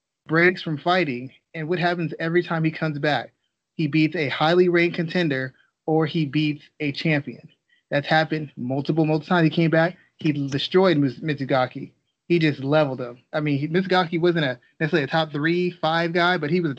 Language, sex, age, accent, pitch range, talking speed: English, male, 30-49, American, 145-170 Hz, 180 wpm